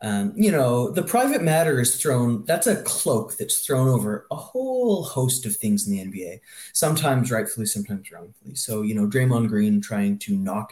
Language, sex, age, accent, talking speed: English, male, 20-39, American, 190 wpm